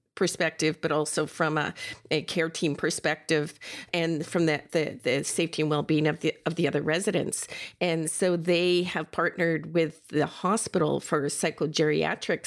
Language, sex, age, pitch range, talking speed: English, female, 50-69, 155-180 Hz, 150 wpm